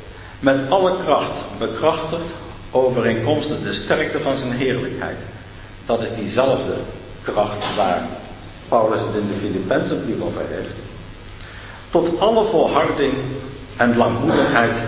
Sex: male